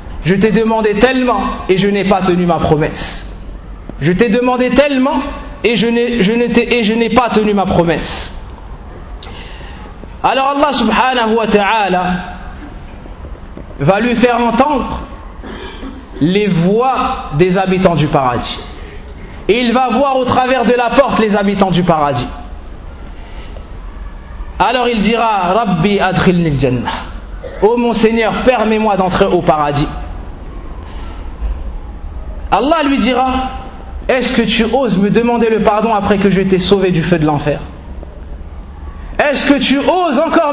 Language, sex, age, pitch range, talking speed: French, male, 40-59, 145-240 Hz, 145 wpm